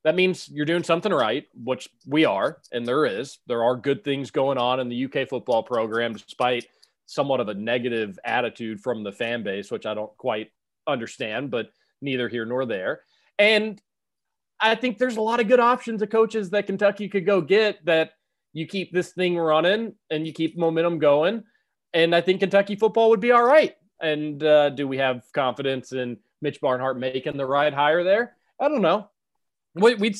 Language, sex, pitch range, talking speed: English, male, 130-200 Hz, 195 wpm